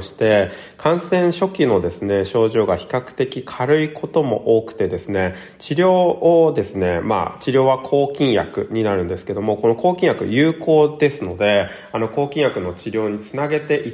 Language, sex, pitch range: Japanese, male, 100-155 Hz